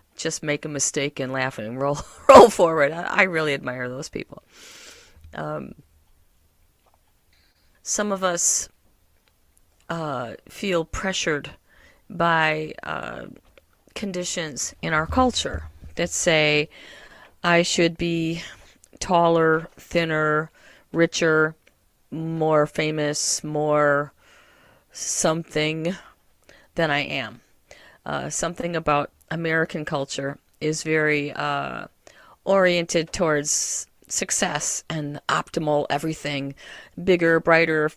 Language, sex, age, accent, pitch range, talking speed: English, female, 40-59, American, 135-165 Hz, 95 wpm